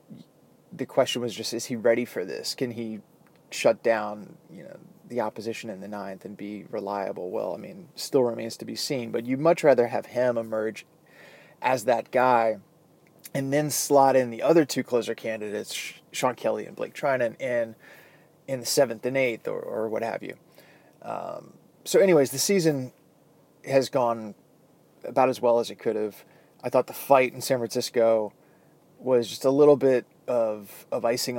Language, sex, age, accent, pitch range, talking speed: English, male, 20-39, American, 115-140 Hz, 180 wpm